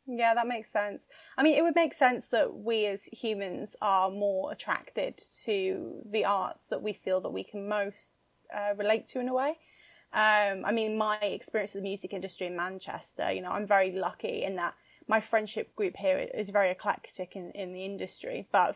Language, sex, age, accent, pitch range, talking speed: English, female, 20-39, British, 190-225 Hz, 200 wpm